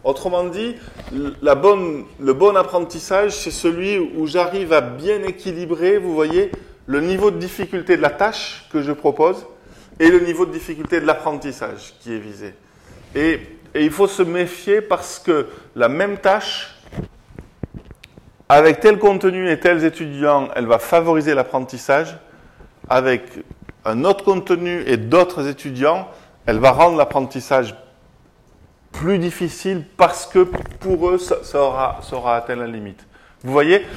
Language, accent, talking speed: French, French, 145 wpm